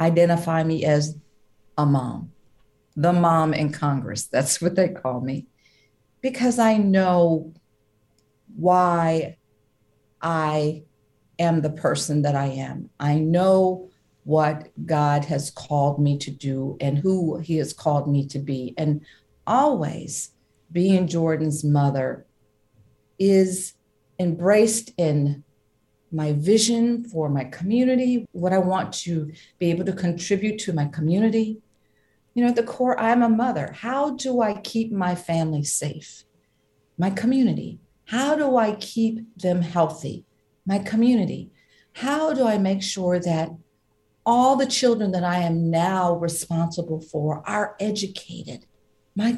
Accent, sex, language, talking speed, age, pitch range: American, female, English, 130 wpm, 50-69, 145-205 Hz